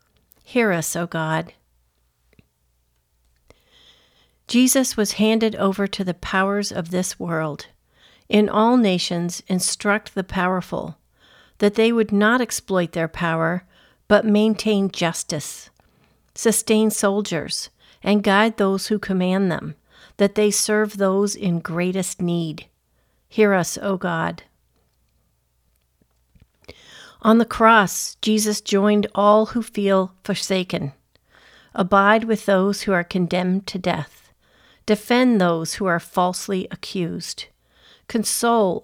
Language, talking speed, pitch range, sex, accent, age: English, 115 wpm, 165-210 Hz, female, American, 50-69